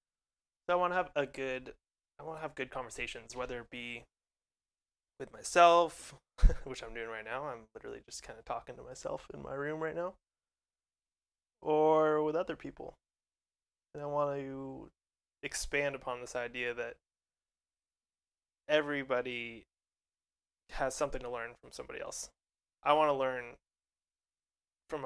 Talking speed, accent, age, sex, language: 150 wpm, American, 20-39, male, English